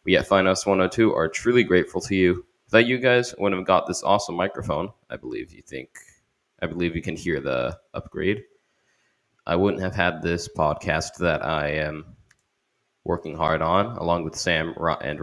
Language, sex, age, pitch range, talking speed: English, male, 20-39, 85-110 Hz, 190 wpm